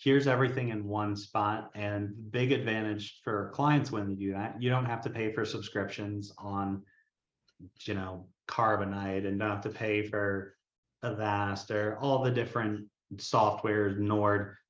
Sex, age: male, 30-49